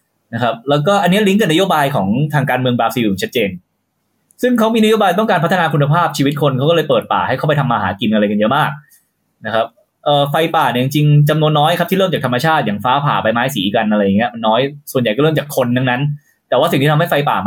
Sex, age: male, 20-39